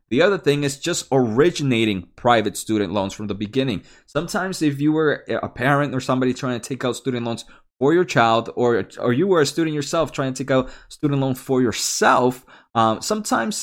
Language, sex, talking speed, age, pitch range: English, male, 205 wpm, 20-39, 110-145 Hz